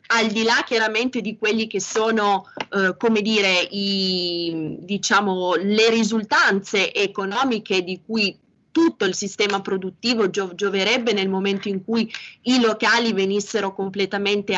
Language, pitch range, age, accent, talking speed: Italian, 195-230 Hz, 20-39, native, 130 wpm